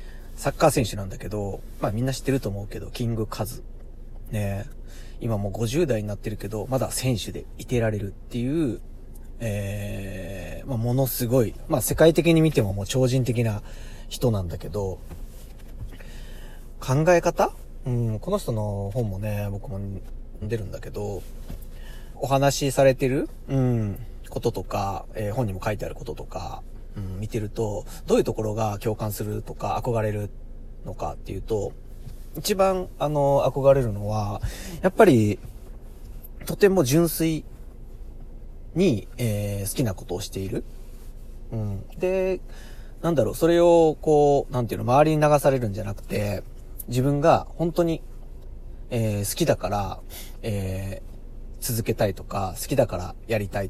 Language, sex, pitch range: Japanese, male, 105-135 Hz